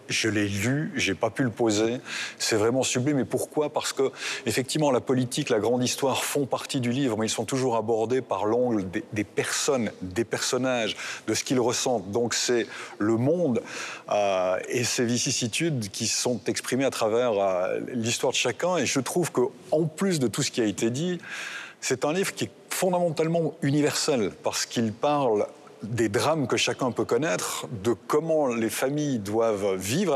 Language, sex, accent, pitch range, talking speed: French, male, French, 115-150 Hz, 185 wpm